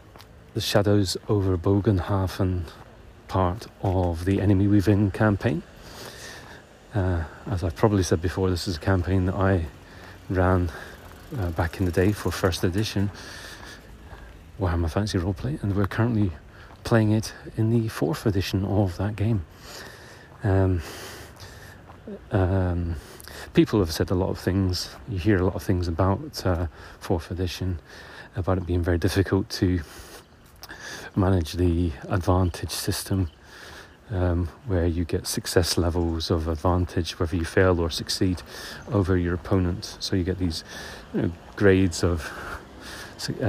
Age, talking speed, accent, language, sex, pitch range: 40-59, 135 wpm, British, English, male, 90-105 Hz